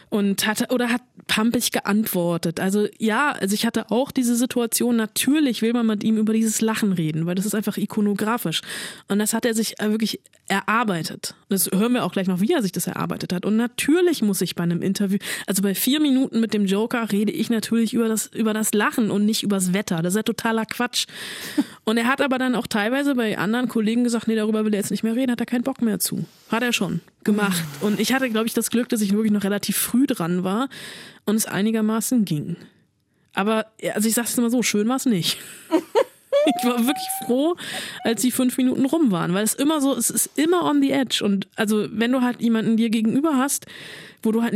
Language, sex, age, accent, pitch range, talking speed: German, female, 20-39, German, 205-245 Hz, 230 wpm